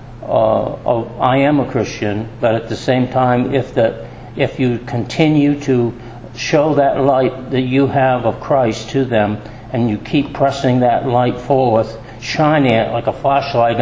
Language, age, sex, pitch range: English, 60-79, male, 115-130 Hz